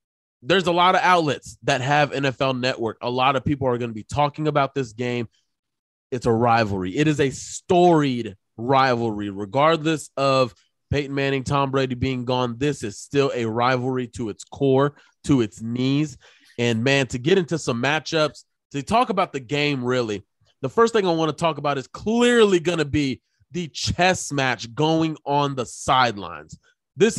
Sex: male